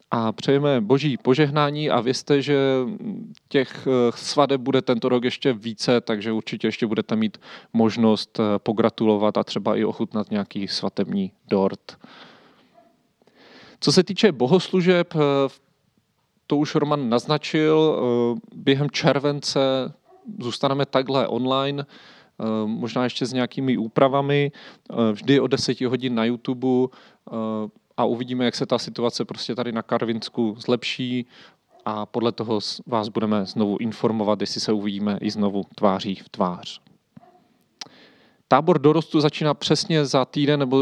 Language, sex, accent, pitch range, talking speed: Czech, male, native, 115-145 Hz, 125 wpm